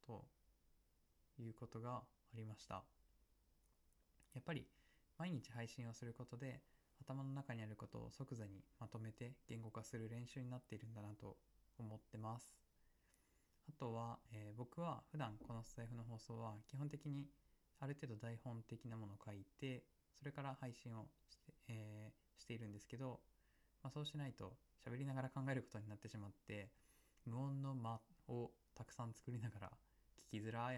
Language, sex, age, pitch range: Japanese, male, 20-39, 105-130 Hz